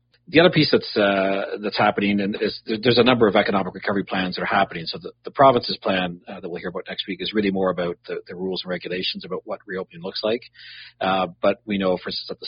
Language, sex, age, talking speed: English, male, 40-59, 250 wpm